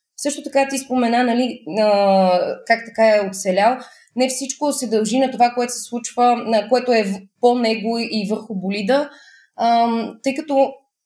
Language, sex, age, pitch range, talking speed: Bulgarian, female, 20-39, 220-255 Hz, 150 wpm